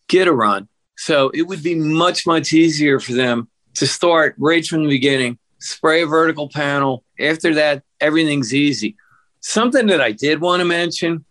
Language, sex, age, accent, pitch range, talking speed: English, male, 50-69, American, 130-170 Hz, 175 wpm